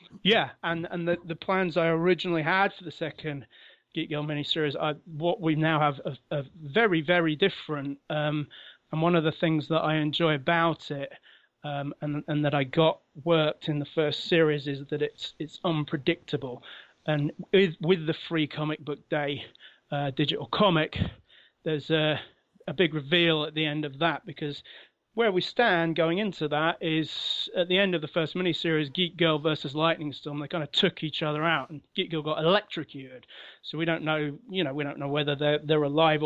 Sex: male